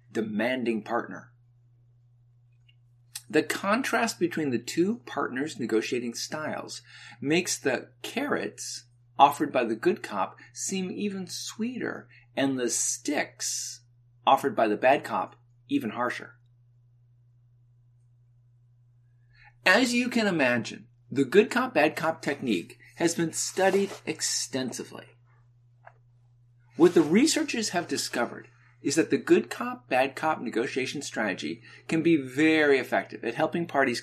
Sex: male